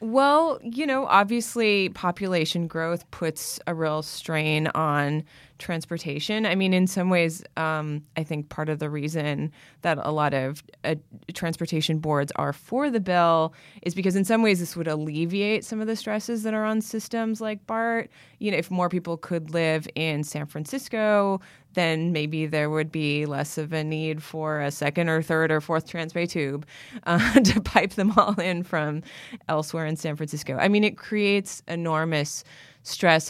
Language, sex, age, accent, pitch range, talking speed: English, female, 20-39, American, 150-190 Hz, 175 wpm